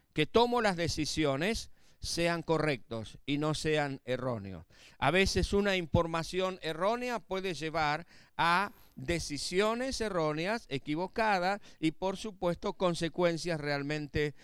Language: Spanish